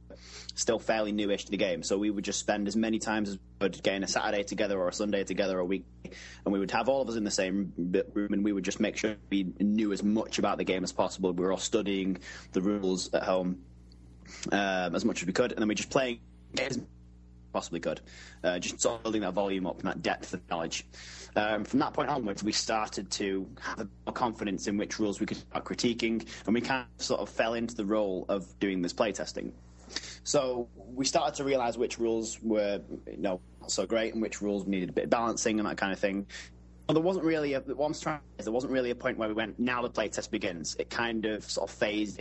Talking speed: 235 wpm